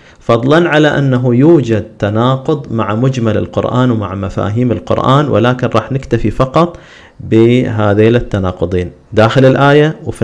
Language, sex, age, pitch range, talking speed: Arabic, male, 40-59, 105-135 Hz, 115 wpm